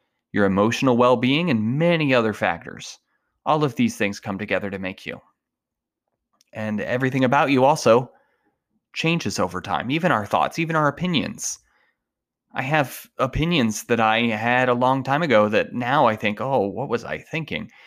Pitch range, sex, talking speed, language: 105-135 Hz, male, 165 wpm, English